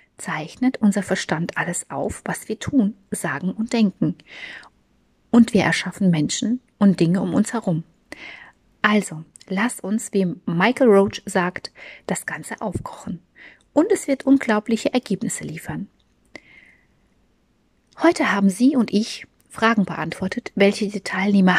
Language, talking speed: German, 130 wpm